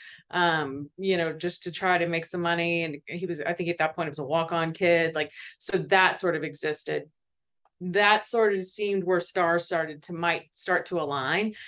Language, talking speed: English, 210 wpm